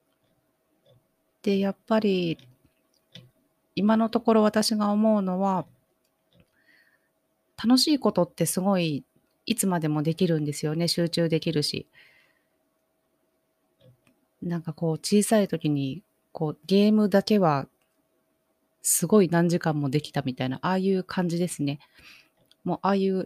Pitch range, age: 155-205 Hz, 30-49